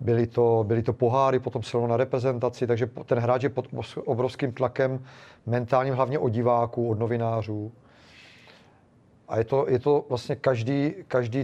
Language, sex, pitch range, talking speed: Czech, male, 120-140 Hz, 155 wpm